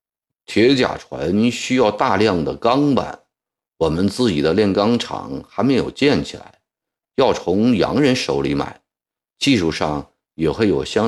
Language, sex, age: Chinese, male, 50-69